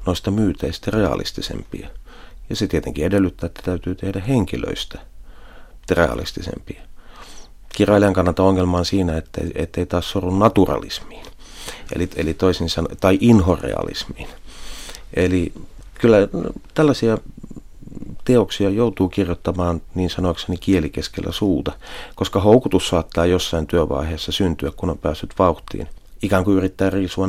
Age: 40-59